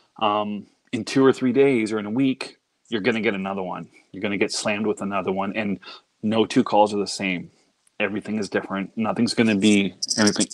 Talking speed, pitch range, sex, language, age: 205 wpm, 105-135 Hz, male, English, 30-49